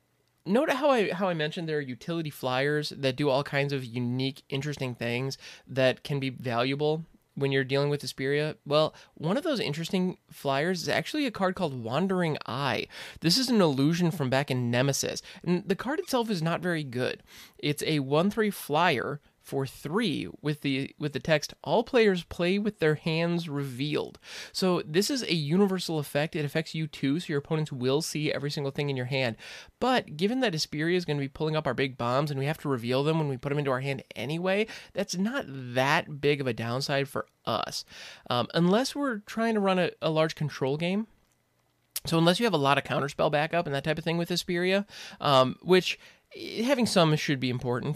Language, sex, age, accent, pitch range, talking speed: English, male, 20-39, American, 135-185 Hz, 205 wpm